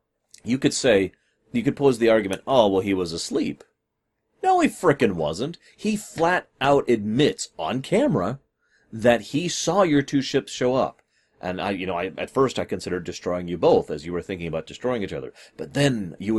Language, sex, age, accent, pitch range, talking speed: English, male, 30-49, American, 100-165 Hz, 195 wpm